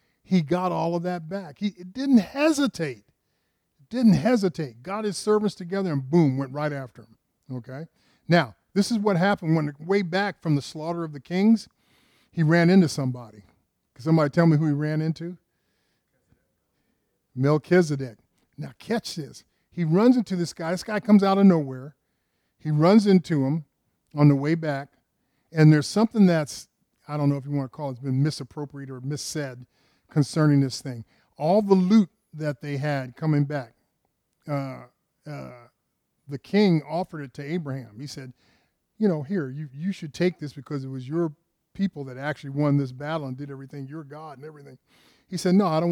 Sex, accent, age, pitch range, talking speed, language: male, American, 50-69, 140-180 Hz, 185 wpm, English